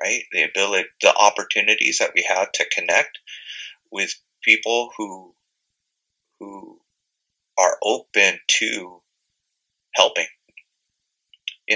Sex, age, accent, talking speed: male, 30-49, American, 95 wpm